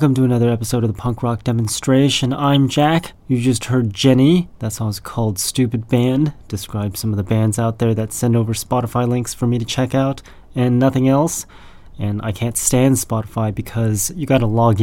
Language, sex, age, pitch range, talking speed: English, male, 30-49, 105-125 Hz, 205 wpm